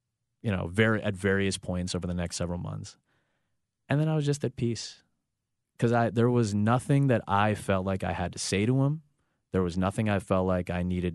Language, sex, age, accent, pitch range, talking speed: English, male, 30-49, American, 90-115 Hz, 220 wpm